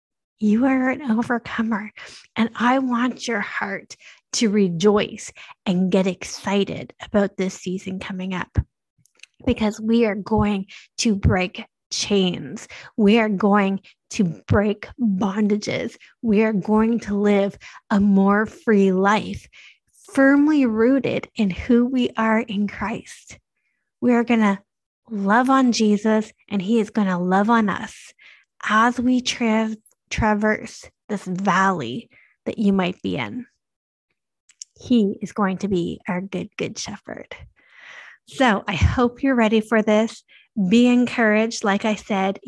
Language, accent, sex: English, American, female